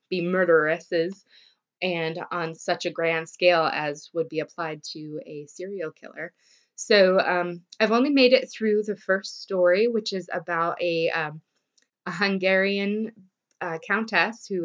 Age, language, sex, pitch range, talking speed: 20-39, English, female, 170-215 Hz, 150 wpm